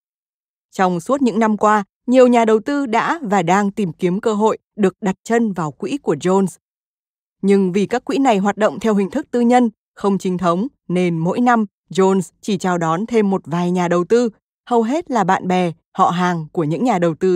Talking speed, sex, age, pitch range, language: 220 wpm, female, 20-39, 180-225 Hz, Vietnamese